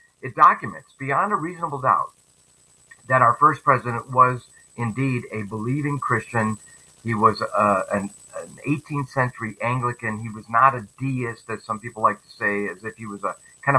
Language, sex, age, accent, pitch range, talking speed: English, male, 50-69, American, 110-135 Hz, 170 wpm